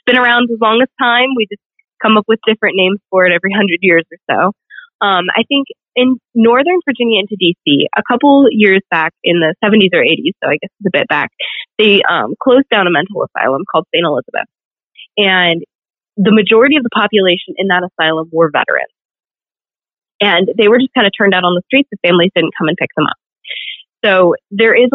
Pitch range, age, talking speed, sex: 175-220 Hz, 20-39, 210 wpm, female